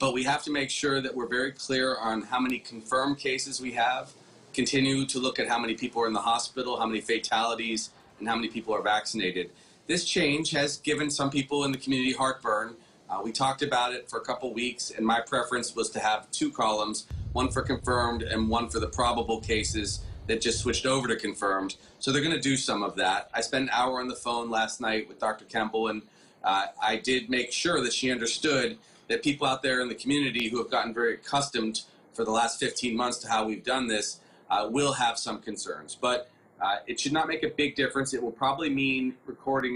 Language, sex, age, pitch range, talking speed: English, male, 30-49, 115-135 Hz, 225 wpm